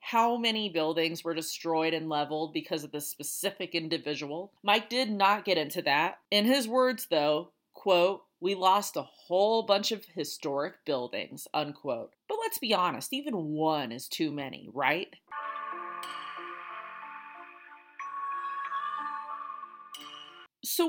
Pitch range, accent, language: 165-245 Hz, American, English